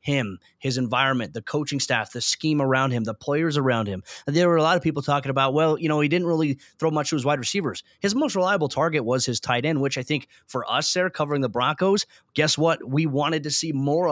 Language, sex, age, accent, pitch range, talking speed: English, male, 20-39, American, 130-160 Hz, 250 wpm